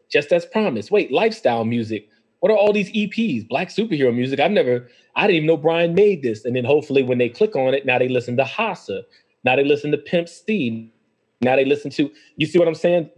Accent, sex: American, male